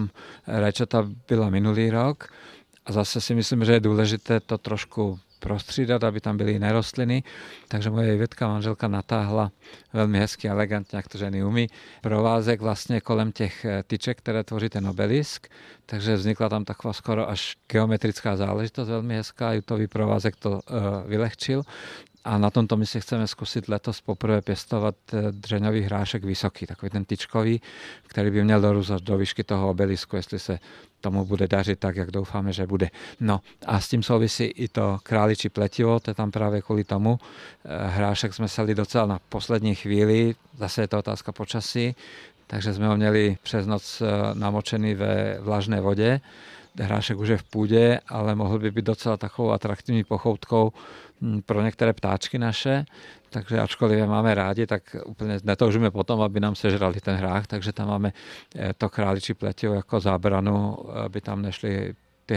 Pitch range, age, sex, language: 100-115 Hz, 50-69, male, Czech